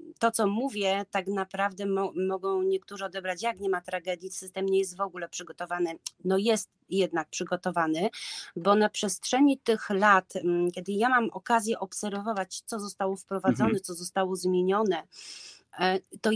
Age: 30-49